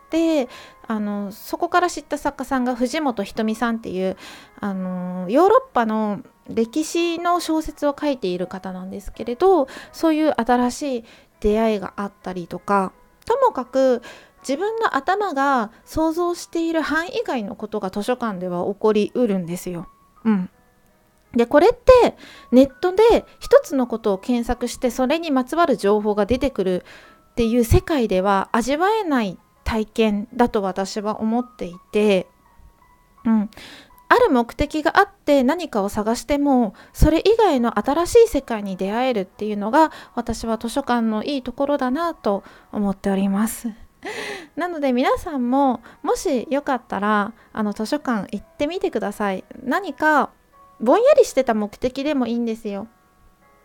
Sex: female